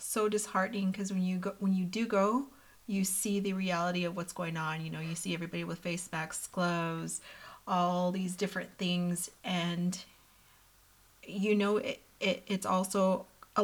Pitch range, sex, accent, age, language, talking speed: 180-210 Hz, female, American, 30-49, English, 170 wpm